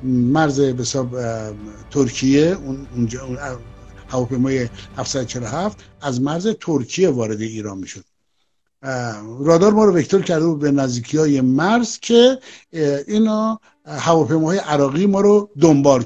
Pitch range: 130-185 Hz